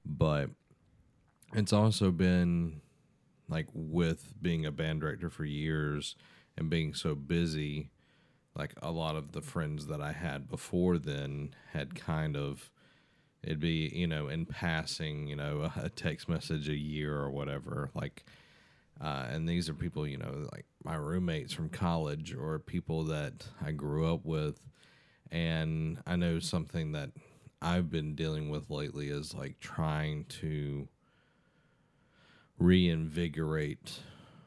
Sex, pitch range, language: male, 75-85 Hz, English